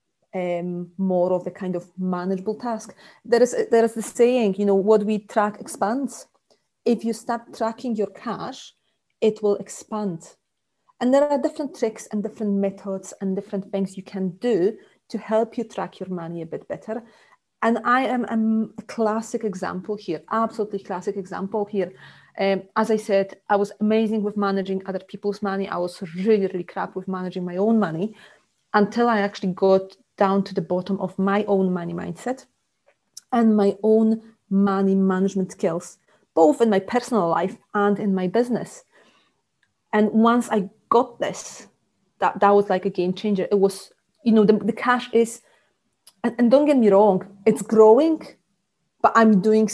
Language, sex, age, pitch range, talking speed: English, female, 40-59, 190-220 Hz, 175 wpm